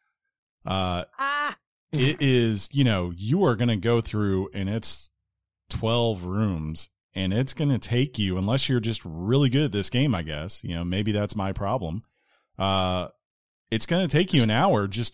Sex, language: male, English